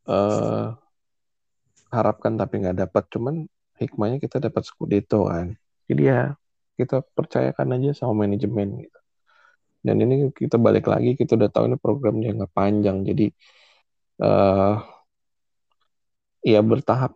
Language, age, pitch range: Indonesian, 20-39, 100-120 Hz